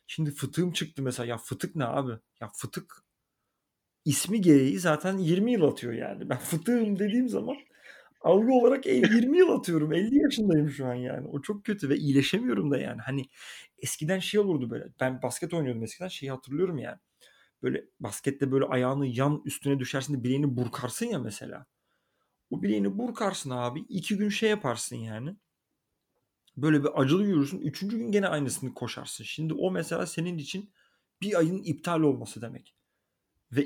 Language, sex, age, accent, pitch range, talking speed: Turkish, male, 40-59, native, 130-175 Hz, 160 wpm